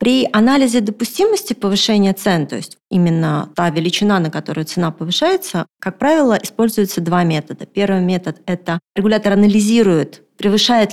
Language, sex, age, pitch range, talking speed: Russian, female, 30-49, 180-225 Hz, 135 wpm